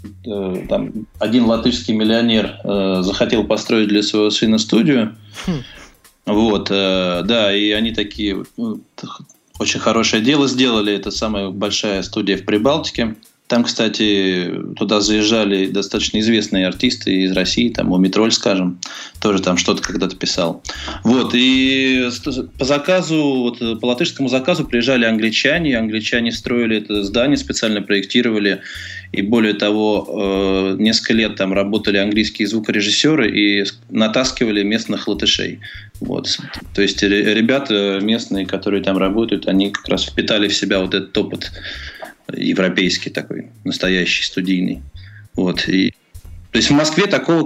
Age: 20-39